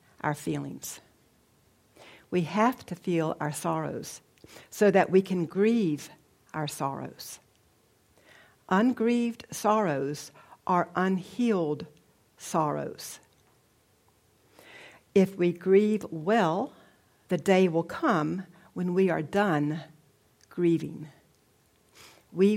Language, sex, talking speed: English, female, 90 wpm